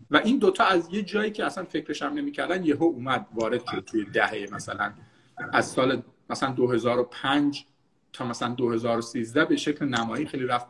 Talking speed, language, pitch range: 180 wpm, Persian, 135-190 Hz